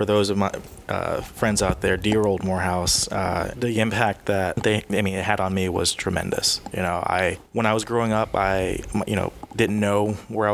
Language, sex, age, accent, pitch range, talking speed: English, male, 20-39, American, 95-110 Hz, 210 wpm